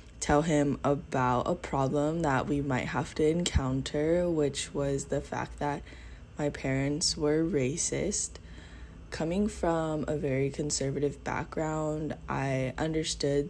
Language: English